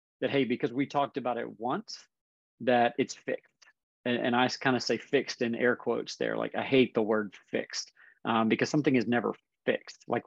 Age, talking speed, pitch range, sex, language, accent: 40-59, 205 wpm, 110-125 Hz, male, English, American